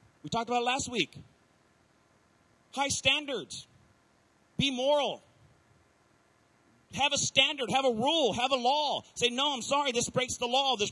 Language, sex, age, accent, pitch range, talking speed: English, male, 40-59, American, 210-265 Hz, 150 wpm